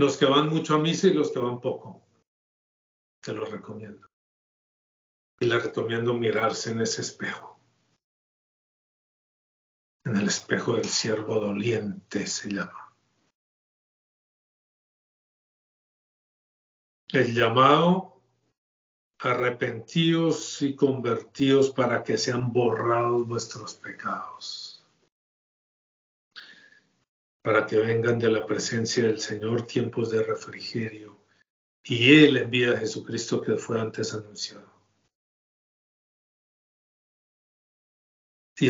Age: 50-69